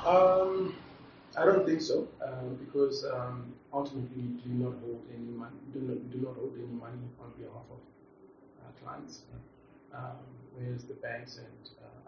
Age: 40-59